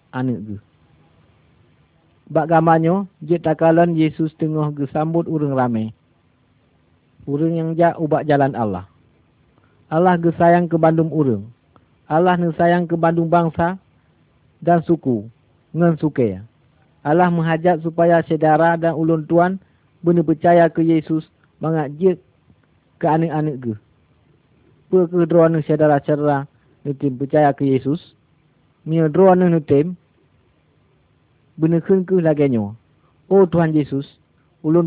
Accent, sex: native, male